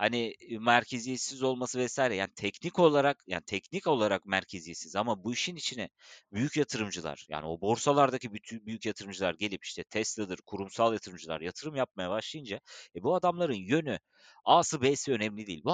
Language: Turkish